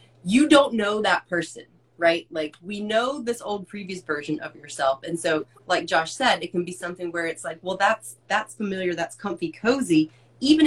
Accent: American